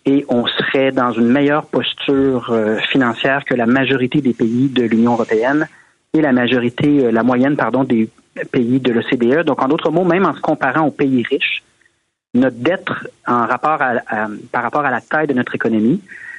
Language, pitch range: French, 120-150 Hz